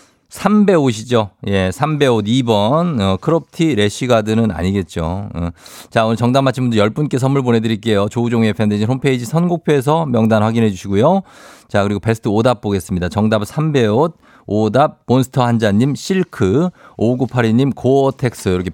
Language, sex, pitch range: Korean, male, 110-145 Hz